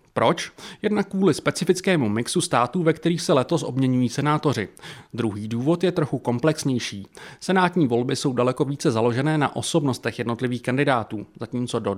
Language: Czech